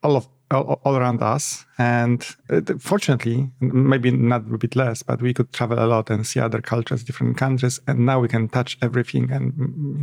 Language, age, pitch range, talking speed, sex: Polish, 50-69, 120-140 Hz, 195 wpm, male